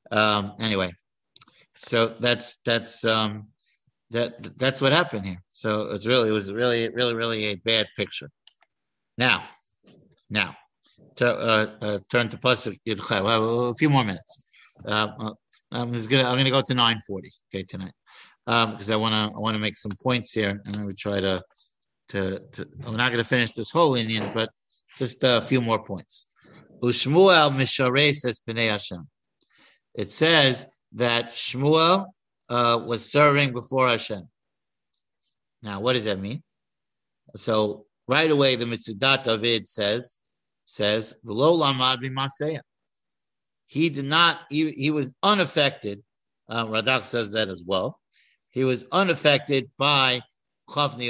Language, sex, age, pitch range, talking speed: English, male, 50-69, 110-135 Hz, 150 wpm